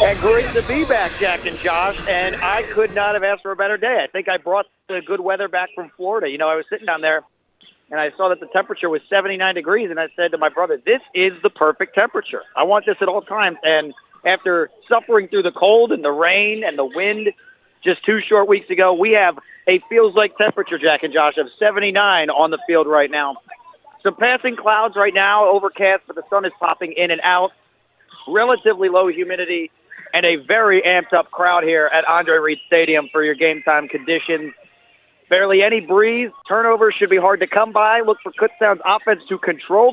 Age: 40-59